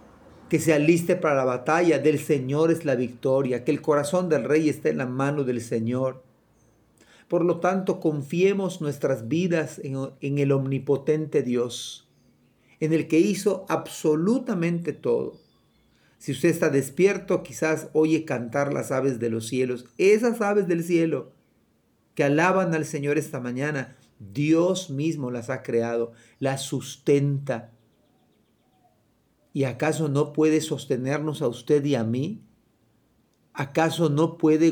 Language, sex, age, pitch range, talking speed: Spanish, male, 40-59, 135-165 Hz, 140 wpm